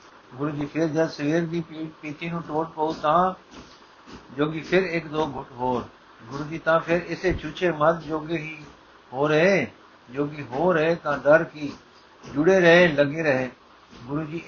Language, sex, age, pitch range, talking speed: Punjabi, male, 60-79, 135-165 Hz, 160 wpm